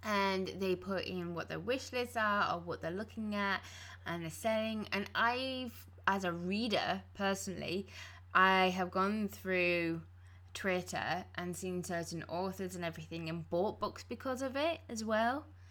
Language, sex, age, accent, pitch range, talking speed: English, female, 20-39, British, 165-210 Hz, 160 wpm